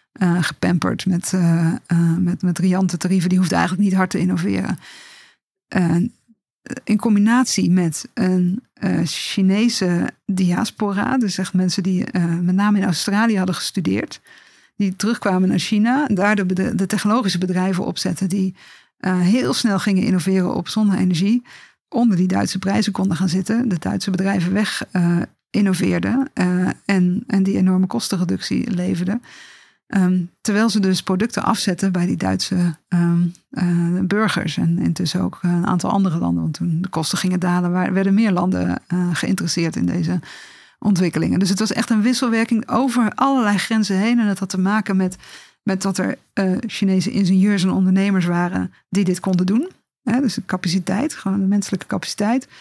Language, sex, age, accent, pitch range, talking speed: Dutch, female, 50-69, Dutch, 180-210 Hz, 165 wpm